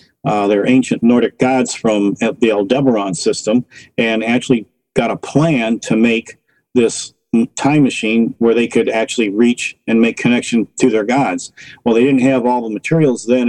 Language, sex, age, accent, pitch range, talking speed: English, male, 50-69, American, 110-130 Hz, 170 wpm